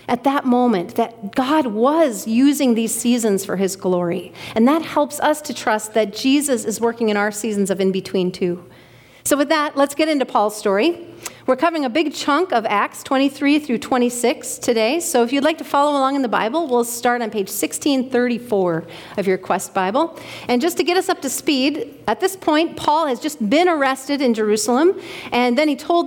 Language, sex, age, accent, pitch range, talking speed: English, female, 40-59, American, 225-300 Hz, 205 wpm